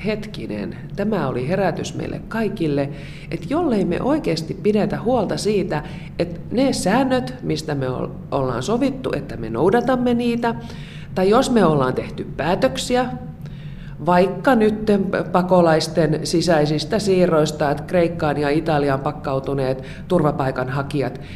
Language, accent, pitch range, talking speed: Finnish, native, 145-195 Hz, 115 wpm